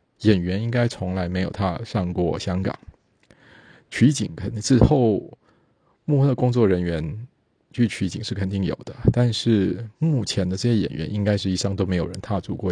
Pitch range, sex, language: 95-115 Hz, male, Chinese